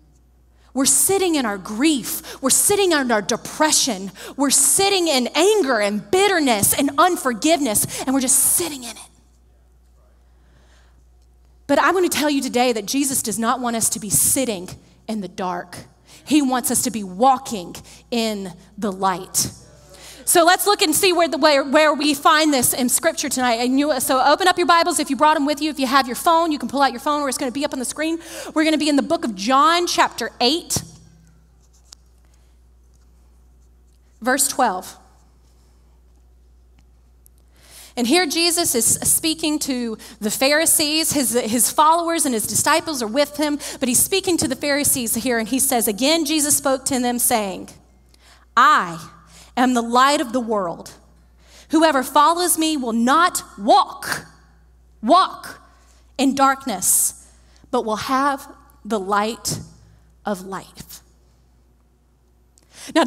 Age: 30-49